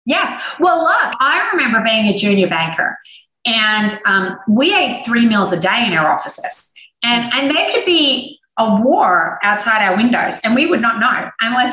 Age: 30-49